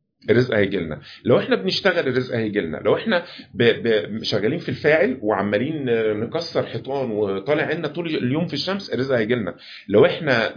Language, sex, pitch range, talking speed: Arabic, male, 125-175 Hz, 155 wpm